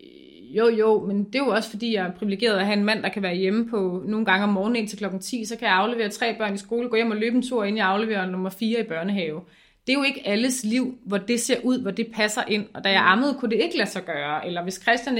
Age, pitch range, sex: 30-49, 200-240 Hz, female